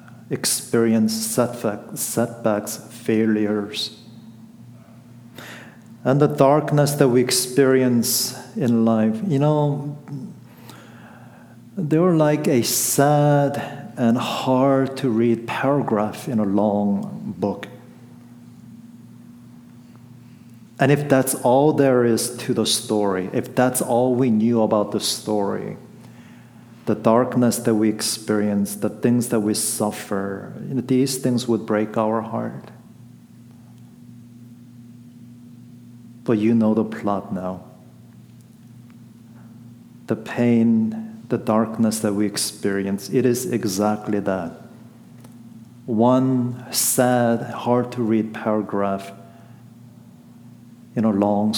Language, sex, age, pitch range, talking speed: English, male, 50-69, 110-125 Hz, 100 wpm